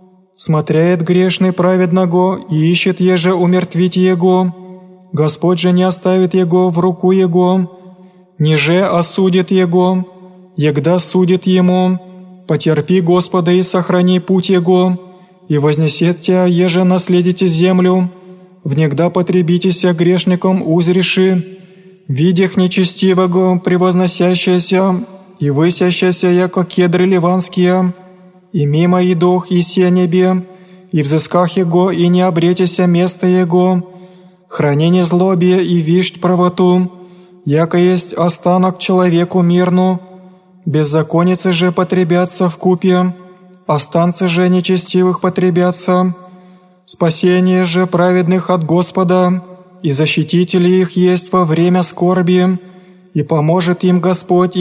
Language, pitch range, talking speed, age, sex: Greek, 180-185 Hz, 105 wpm, 20-39, male